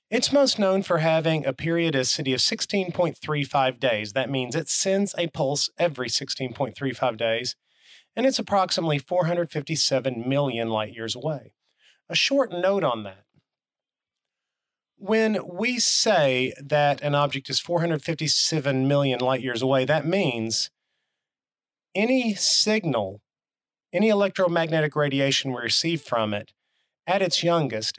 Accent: American